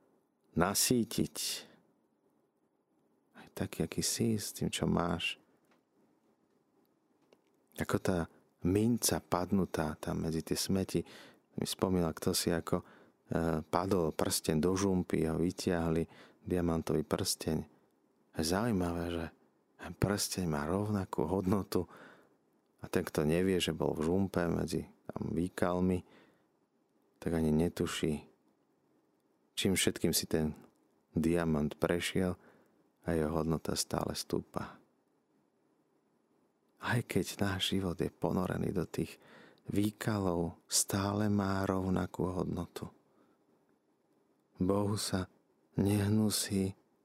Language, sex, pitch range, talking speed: Slovak, male, 85-100 Hz, 100 wpm